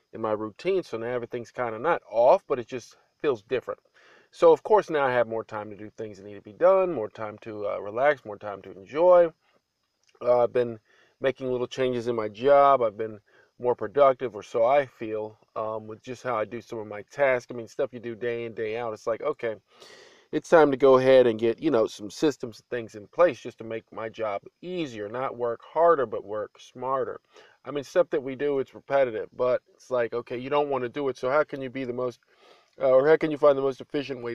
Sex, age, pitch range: male, 40-59, 115-145 Hz